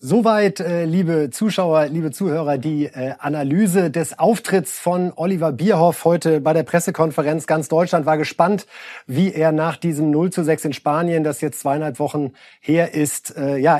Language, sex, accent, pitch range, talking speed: German, male, German, 140-165 Hz, 155 wpm